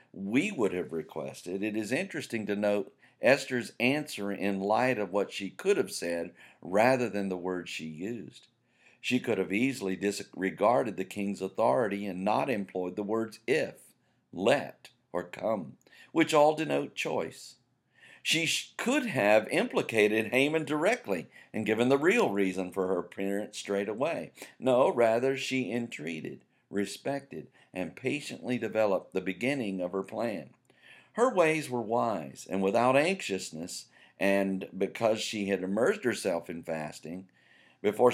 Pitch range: 95-125 Hz